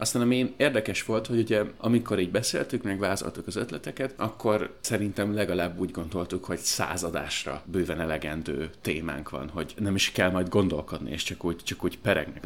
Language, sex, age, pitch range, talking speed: Hungarian, male, 30-49, 85-110 Hz, 175 wpm